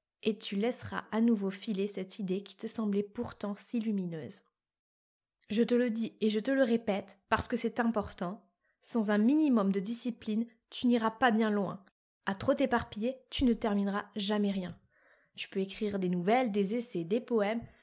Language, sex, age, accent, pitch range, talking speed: French, female, 20-39, French, 200-245 Hz, 180 wpm